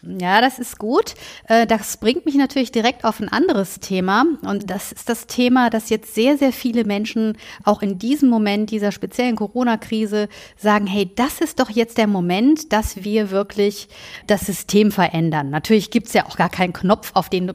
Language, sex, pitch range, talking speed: German, female, 190-240 Hz, 190 wpm